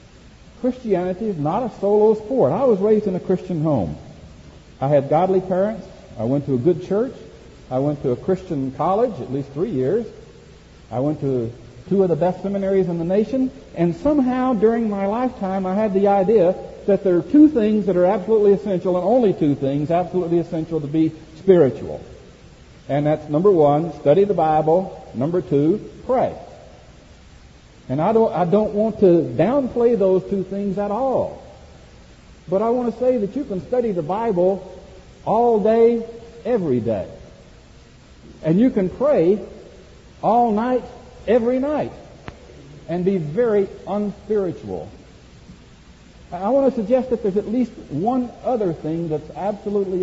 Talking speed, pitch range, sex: 160 wpm, 145-215 Hz, male